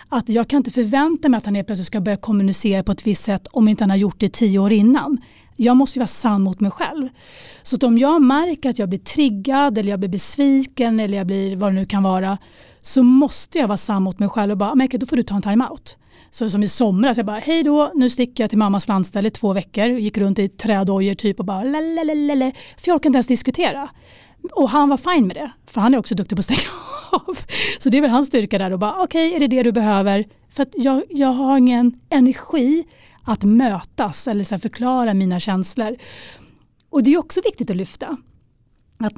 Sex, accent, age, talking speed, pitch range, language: female, native, 30-49, 245 wpm, 200-270 Hz, Swedish